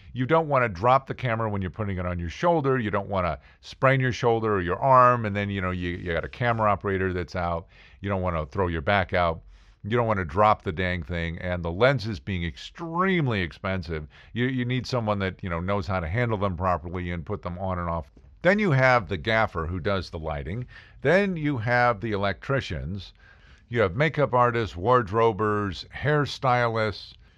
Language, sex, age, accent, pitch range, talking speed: English, male, 50-69, American, 90-125 Hz, 215 wpm